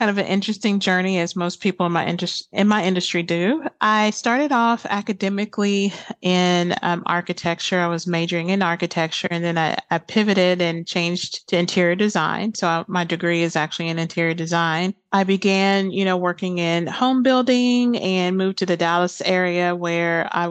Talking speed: 175 wpm